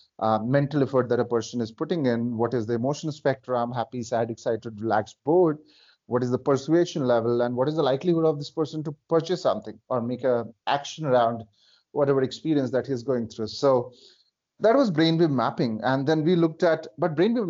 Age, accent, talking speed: 30-49, Indian, 200 wpm